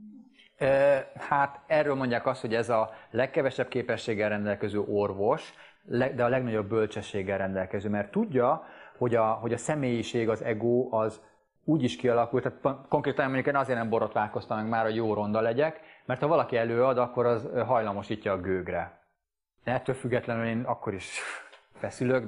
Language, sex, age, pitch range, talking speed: Hungarian, male, 30-49, 105-130 Hz, 155 wpm